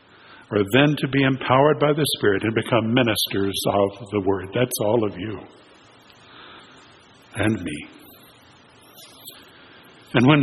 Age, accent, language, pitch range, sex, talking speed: 60-79, American, English, 115-160 Hz, male, 125 wpm